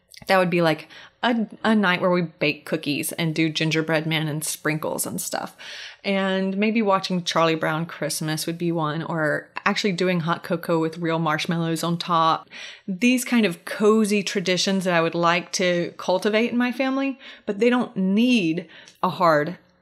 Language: English